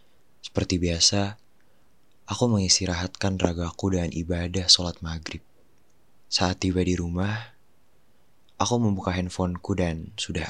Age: 20-39